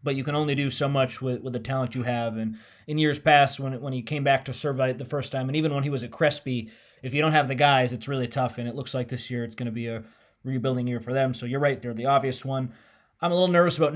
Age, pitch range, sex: 20-39, 125-145 Hz, male